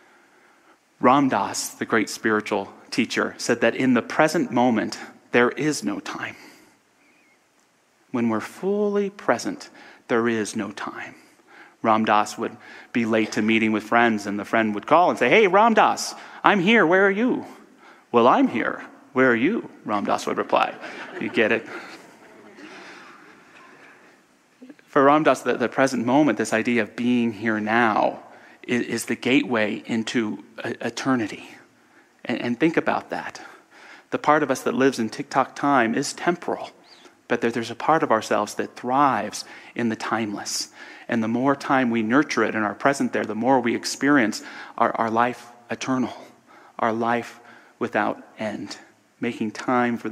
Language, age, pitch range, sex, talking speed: English, 30-49, 115-150 Hz, male, 150 wpm